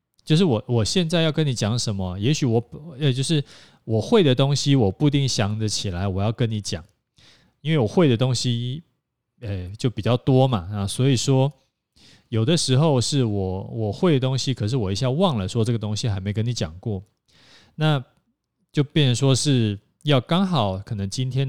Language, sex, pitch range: Chinese, male, 100-130 Hz